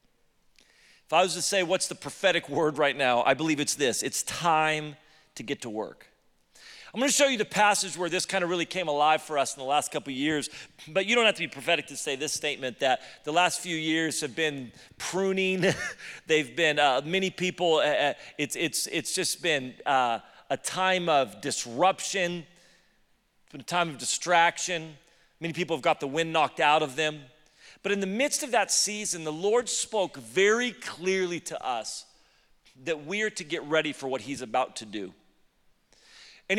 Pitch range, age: 155-195 Hz, 40-59